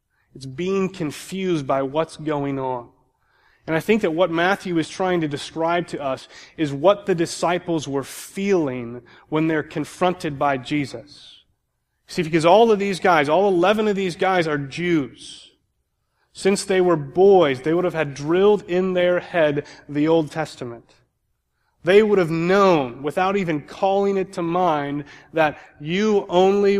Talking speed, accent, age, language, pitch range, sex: 160 wpm, American, 30-49, English, 145-185 Hz, male